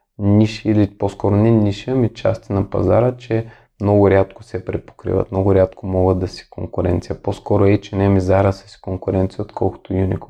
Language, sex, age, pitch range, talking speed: Bulgarian, male, 20-39, 95-115 Hz, 175 wpm